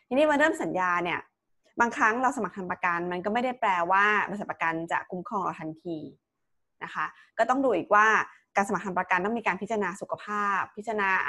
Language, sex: Thai, female